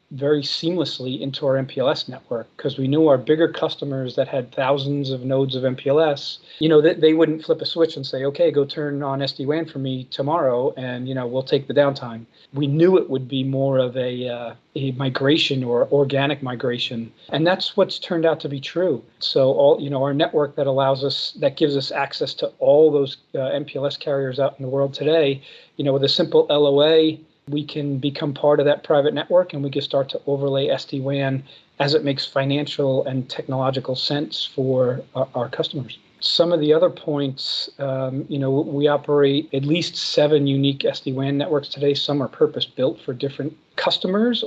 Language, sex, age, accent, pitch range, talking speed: English, male, 40-59, American, 135-150 Hz, 195 wpm